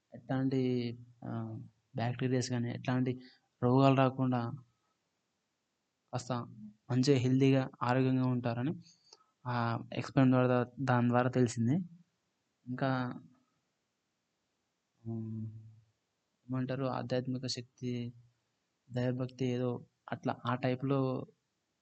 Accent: native